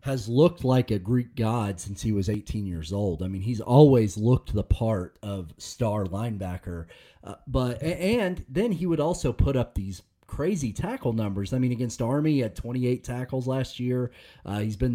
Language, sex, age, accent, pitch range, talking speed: English, male, 30-49, American, 105-135 Hz, 190 wpm